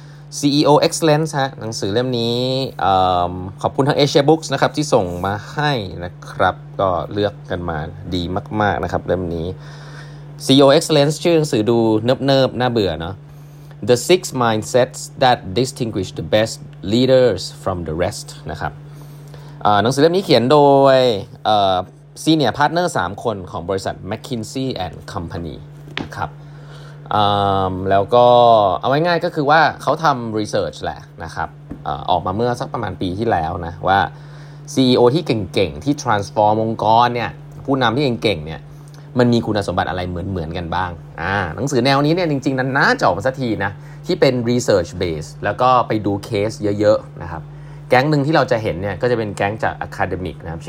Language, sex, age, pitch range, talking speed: English, male, 20-39, 100-145 Hz, 40 wpm